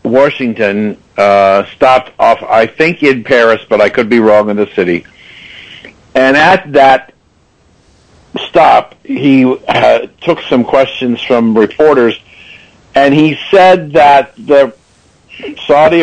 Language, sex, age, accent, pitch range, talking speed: English, male, 60-79, American, 110-140 Hz, 125 wpm